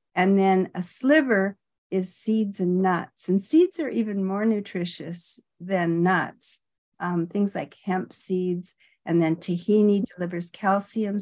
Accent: American